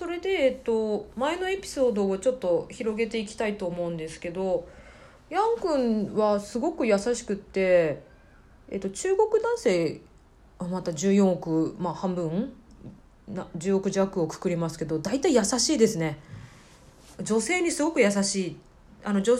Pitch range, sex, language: 180-295 Hz, female, Japanese